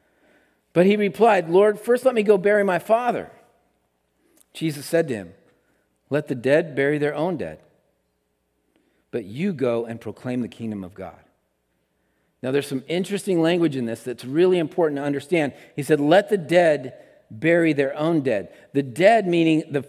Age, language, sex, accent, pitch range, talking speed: 50-69, English, male, American, 120-200 Hz, 170 wpm